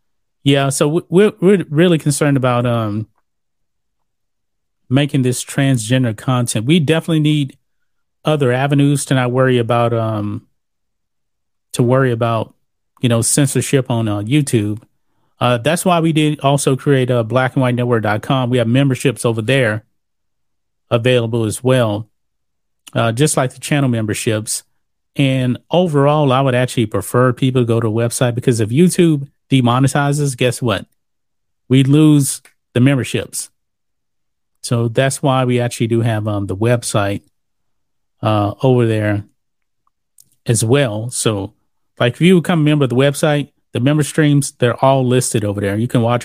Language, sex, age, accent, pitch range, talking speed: English, male, 30-49, American, 115-145 Hz, 145 wpm